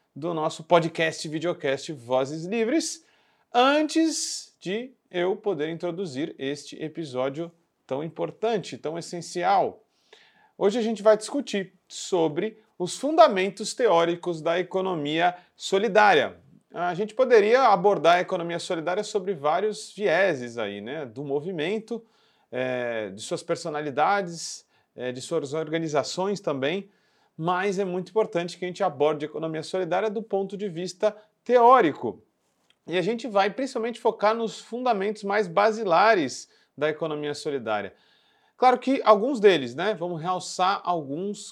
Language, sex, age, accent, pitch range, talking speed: Portuguese, male, 40-59, Brazilian, 165-220 Hz, 125 wpm